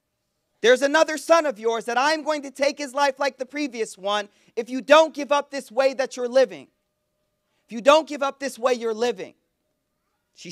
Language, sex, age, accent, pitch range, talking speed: English, male, 40-59, American, 205-265 Hz, 205 wpm